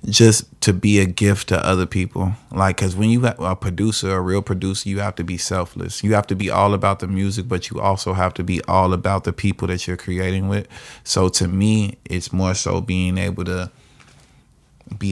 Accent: American